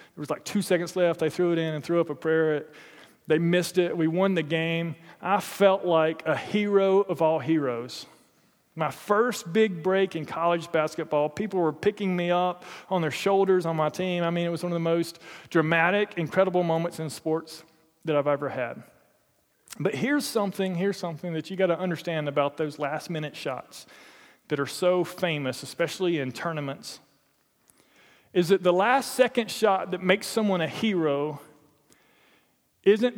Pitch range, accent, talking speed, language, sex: 150-200 Hz, American, 175 wpm, English, male